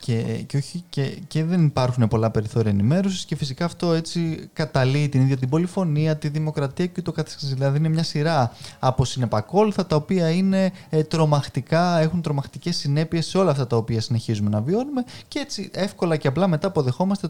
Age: 20-39